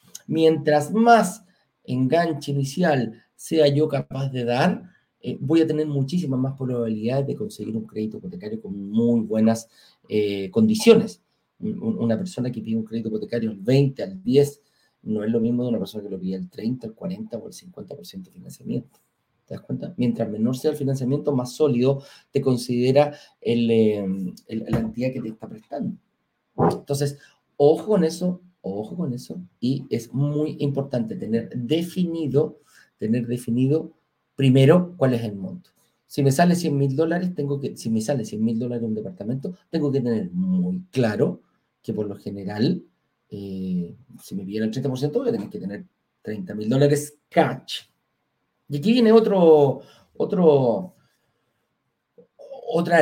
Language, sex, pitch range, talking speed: Spanish, male, 115-175 Hz, 160 wpm